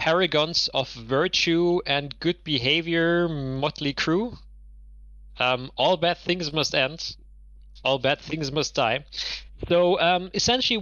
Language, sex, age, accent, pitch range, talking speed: English, male, 30-49, German, 125-155 Hz, 120 wpm